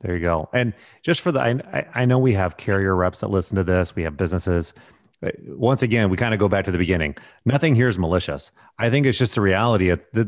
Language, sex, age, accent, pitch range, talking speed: English, male, 30-49, American, 95-120 Hz, 245 wpm